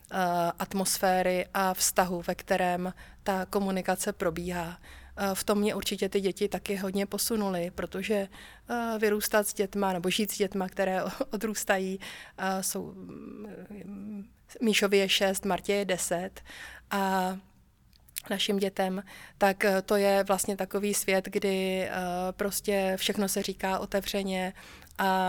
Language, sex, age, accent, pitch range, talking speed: Czech, female, 30-49, native, 180-205 Hz, 120 wpm